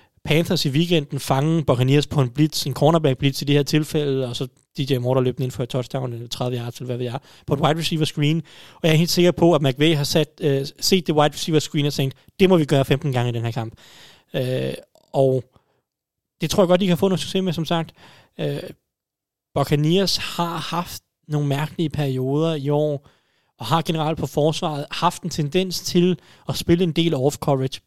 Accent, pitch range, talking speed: native, 135-165 Hz, 215 wpm